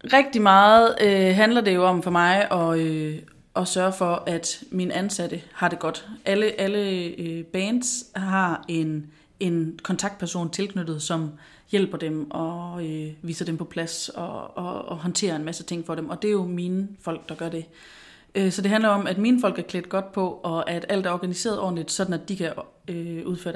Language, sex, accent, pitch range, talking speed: Danish, female, native, 165-195 Hz, 205 wpm